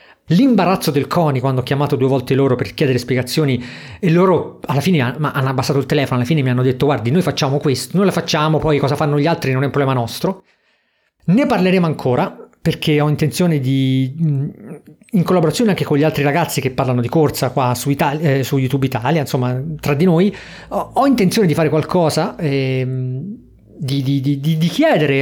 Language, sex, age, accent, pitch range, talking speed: Italian, male, 40-59, native, 135-170 Hz, 190 wpm